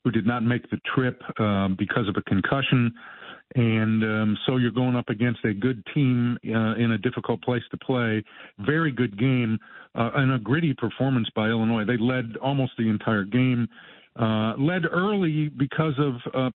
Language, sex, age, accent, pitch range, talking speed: English, male, 50-69, American, 115-140 Hz, 180 wpm